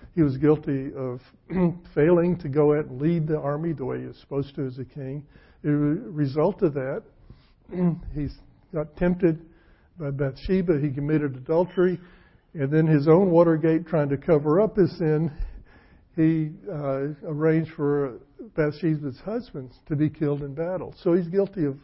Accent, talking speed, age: American, 160 wpm, 60-79